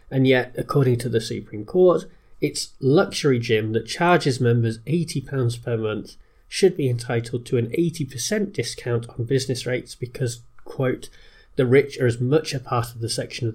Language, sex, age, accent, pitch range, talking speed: English, male, 30-49, British, 120-150 Hz, 175 wpm